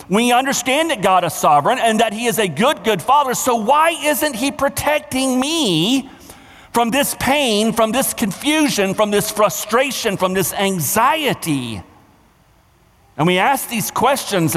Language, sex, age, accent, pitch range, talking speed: English, male, 50-69, American, 145-225 Hz, 150 wpm